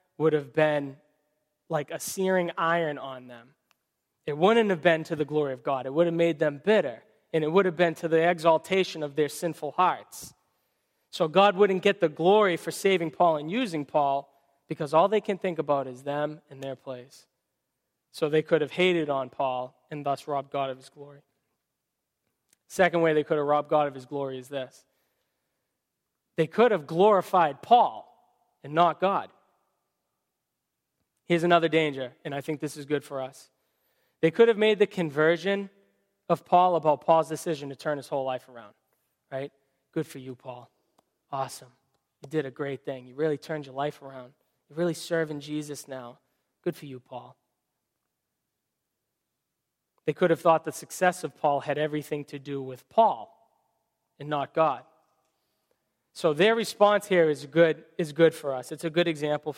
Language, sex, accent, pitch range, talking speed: English, male, American, 140-175 Hz, 180 wpm